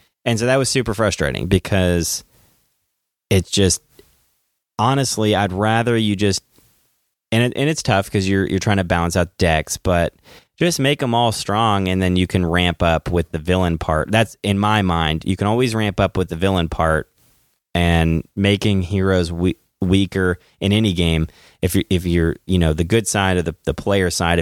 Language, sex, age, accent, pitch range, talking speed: English, male, 30-49, American, 85-105 Hz, 190 wpm